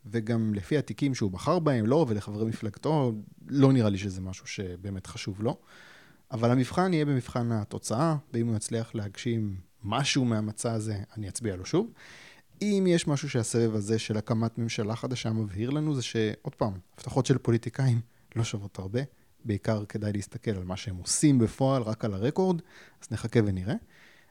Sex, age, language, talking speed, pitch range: male, 30-49, Hebrew, 170 wpm, 105-135 Hz